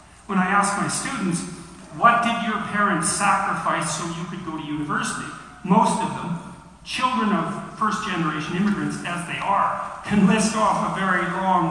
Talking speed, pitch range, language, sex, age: 165 wpm, 170-205 Hz, English, male, 50-69